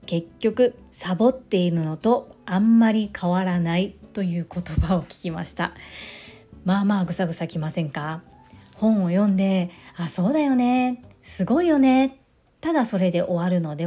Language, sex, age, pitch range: Japanese, female, 40-59, 170-225 Hz